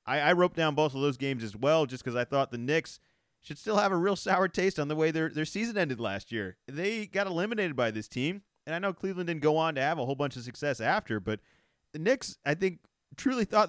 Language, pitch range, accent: English, 130-175 Hz, American